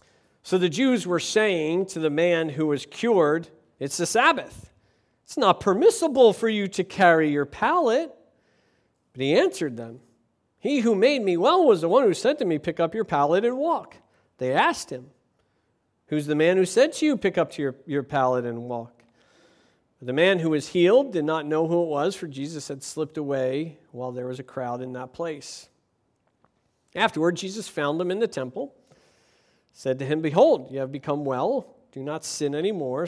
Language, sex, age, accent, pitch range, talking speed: English, male, 50-69, American, 140-190 Hz, 190 wpm